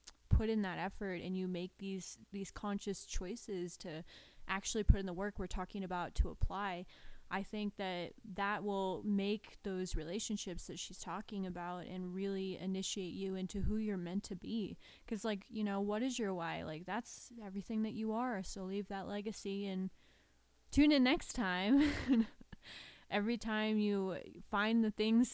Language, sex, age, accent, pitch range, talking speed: English, female, 20-39, American, 185-210 Hz, 175 wpm